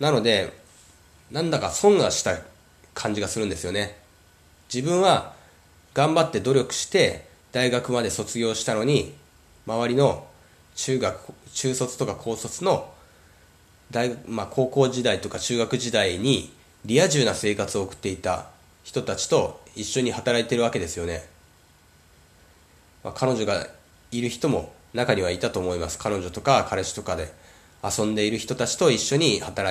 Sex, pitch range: male, 80-125 Hz